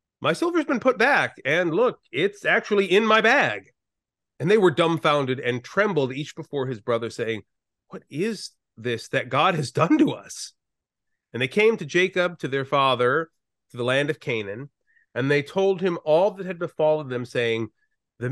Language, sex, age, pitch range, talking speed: English, male, 30-49, 125-180 Hz, 185 wpm